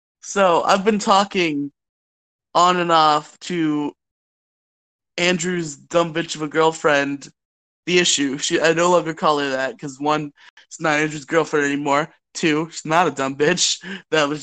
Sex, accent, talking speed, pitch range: male, American, 160 wpm, 140-180 Hz